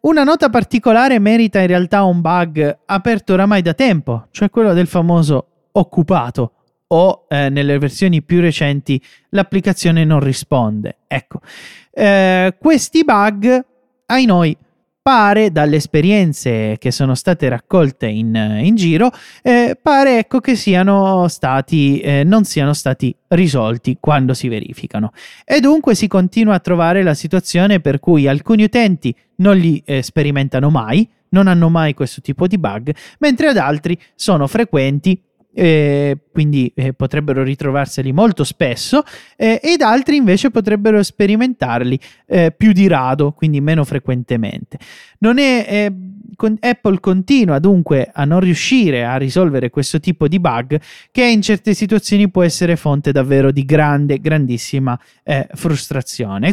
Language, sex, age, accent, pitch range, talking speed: Italian, male, 30-49, native, 135-205 Hz, 140 wpm